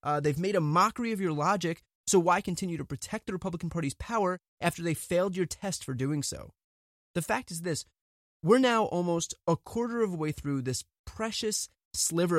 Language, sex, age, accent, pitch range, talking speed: English, male, 20-39, American, 130-185 Hz, 200 wpm